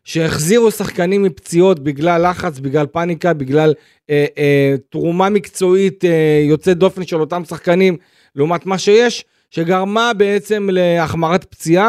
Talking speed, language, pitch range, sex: 125 wpm, Hebrew, 145-180 Hz, male